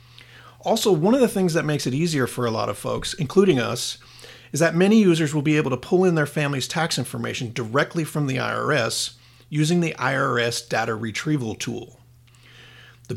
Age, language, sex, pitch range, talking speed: 40-59, English, male, 120-155 Hz, 185 wpm